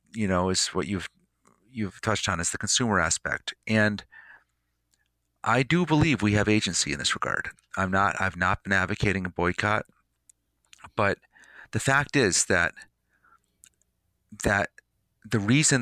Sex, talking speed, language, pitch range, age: male, 145 wpm, English, 85-110 Hz, 40-59